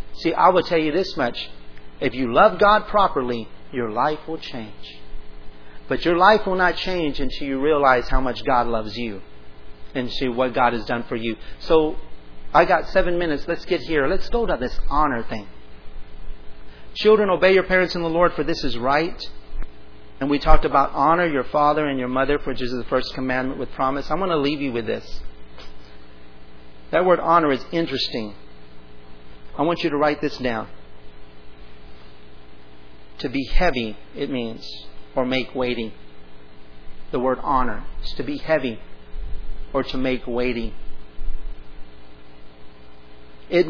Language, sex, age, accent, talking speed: English, male, 40-59, American, 160 wpm